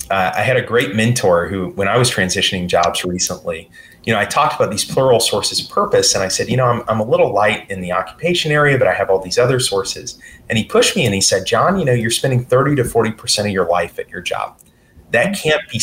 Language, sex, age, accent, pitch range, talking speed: English, male, 30-49, American, 95-125 Hz, 260 wpm